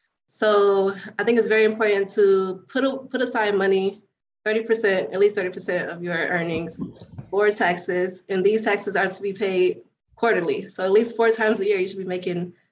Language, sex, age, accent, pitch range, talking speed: English, female, 20-39, American, 180-215 Hz, 185 wpm